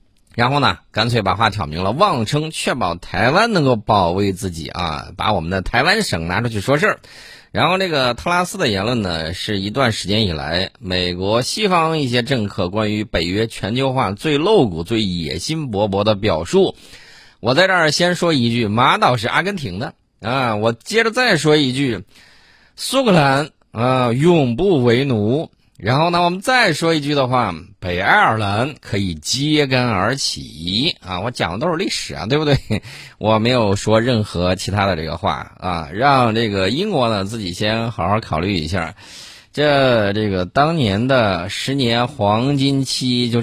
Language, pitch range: Chinese, 95-135 Hz